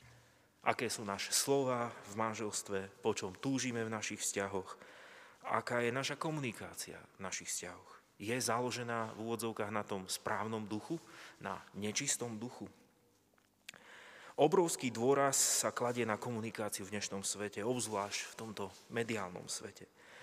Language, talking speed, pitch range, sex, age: Slovak, 130 wpm, 105-125 Hz, male, 30-49